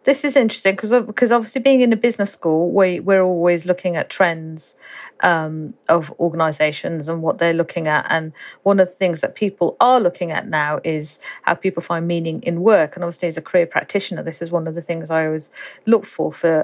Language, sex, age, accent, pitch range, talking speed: English, female, 40-59, British, 170-210 Hz, 215 wpm